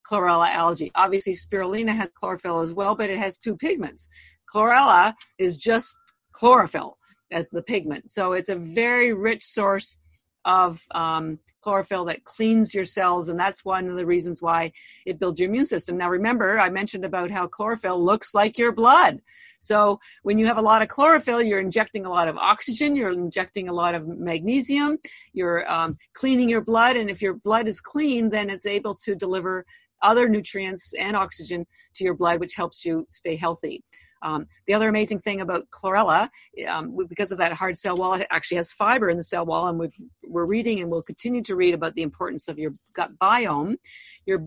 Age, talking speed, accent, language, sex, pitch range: 50-69, 190 wpm, American, English, female, 175-225 Hz